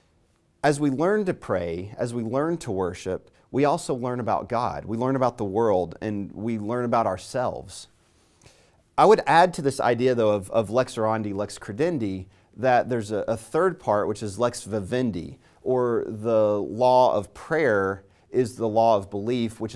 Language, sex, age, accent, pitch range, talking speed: English, male, 30-49, American, 100-125 Hz, 180 wpm